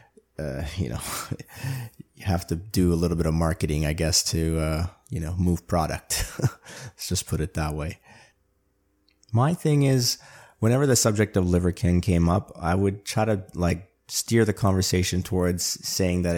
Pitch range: 85-105 Hz